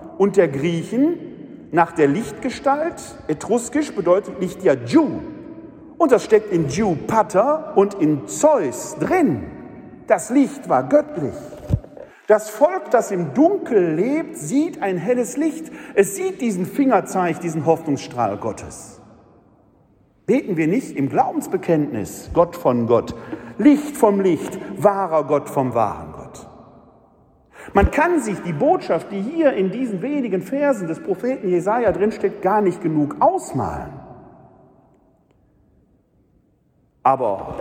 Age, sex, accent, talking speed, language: 50-69, male, German, 125 wpm, German